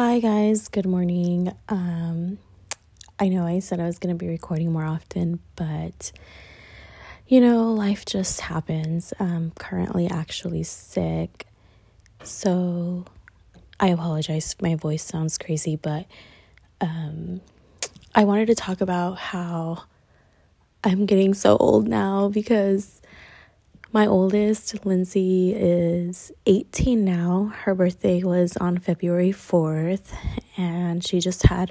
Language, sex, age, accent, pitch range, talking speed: English, female, 20-39, American, 170-195 Hz, 120 wpm